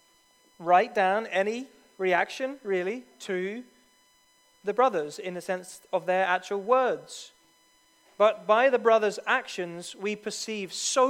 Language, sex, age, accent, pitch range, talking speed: English, male, 30-49, British, 180-245 Hz, 125 wpm